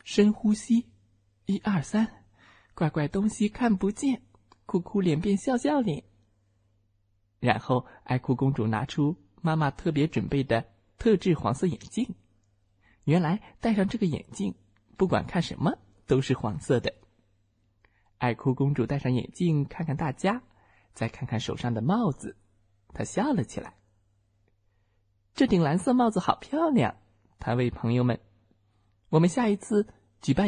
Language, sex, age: Chinese, male, 20-39